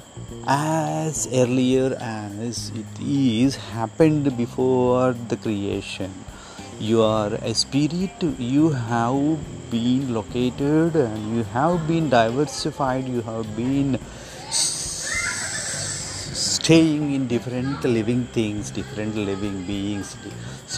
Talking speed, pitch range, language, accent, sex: 95 wpm, 110-145 Hz, Hindi, native, male